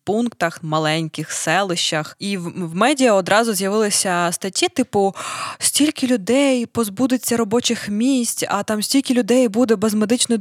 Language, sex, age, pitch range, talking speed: Ukrainian, female, 20-39, 175-230 Hz, 135 wpm